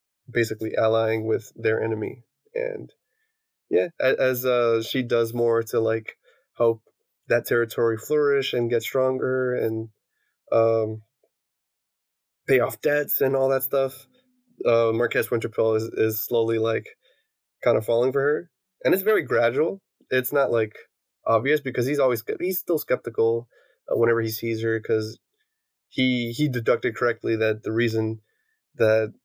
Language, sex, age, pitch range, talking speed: English, male, 20-39, 115-165 Hz, 140 wpm